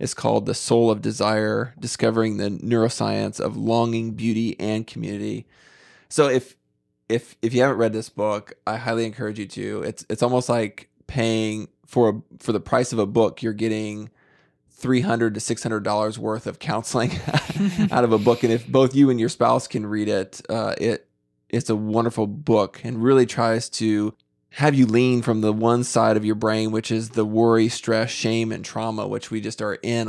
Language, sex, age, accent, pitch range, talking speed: English, male, 20-39, American, 105-120 Hz, 195 wpm